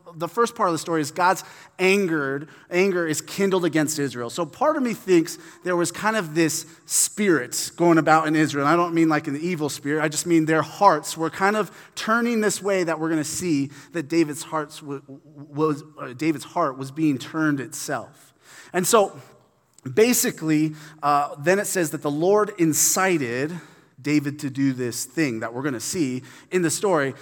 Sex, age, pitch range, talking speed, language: male, 30-49, 150-185 Hz, 190 wpm, English